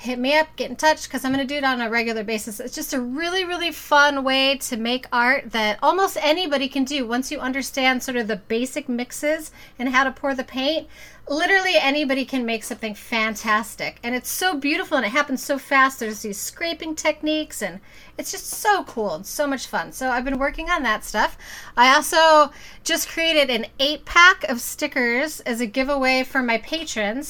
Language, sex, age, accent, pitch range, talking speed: English, female, 30-49, American, 235-300 Hz, 205 wpm